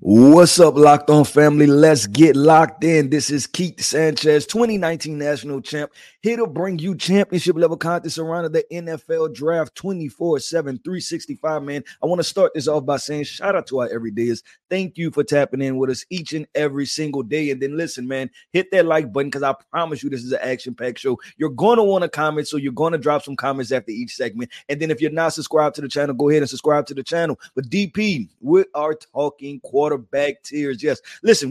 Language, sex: English, male